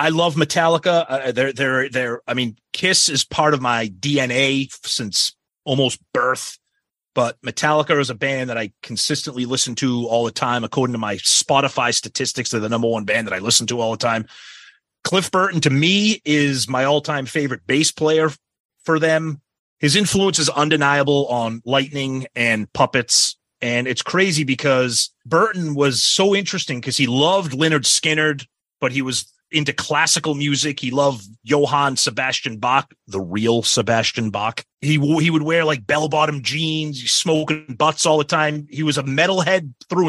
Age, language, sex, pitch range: 30-49, English, male, 120-155 Hz